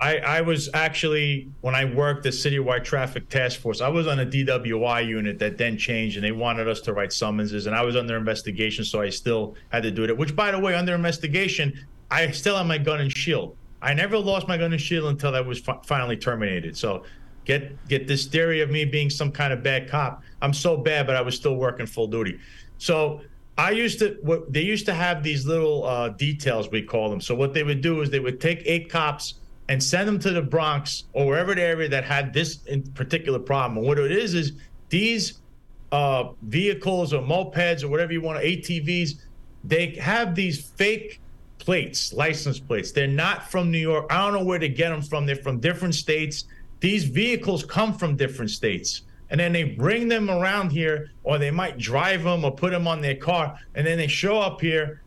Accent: American